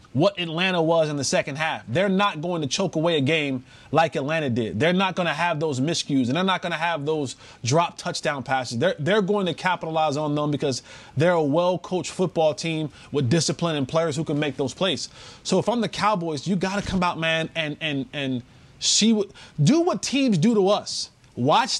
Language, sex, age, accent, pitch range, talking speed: English, male, 30-49, American, 160-235 Hz, 220 wpm